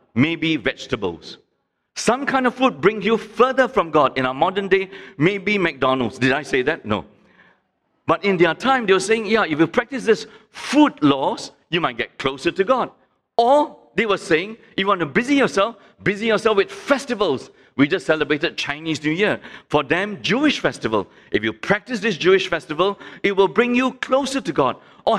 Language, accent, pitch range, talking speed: English, Malaysian, 155-230 Hz, 190 wpm